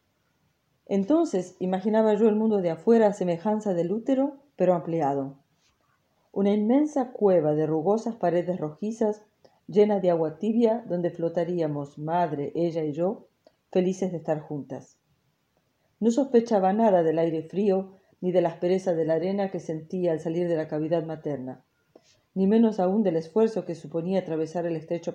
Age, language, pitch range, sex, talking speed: 40-59, French, 160-200 Hz, female, 155 wpm